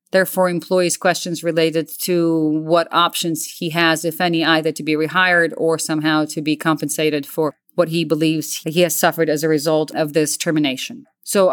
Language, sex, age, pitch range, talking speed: English, female, 30-49, 155-185 Hz, 175 wpm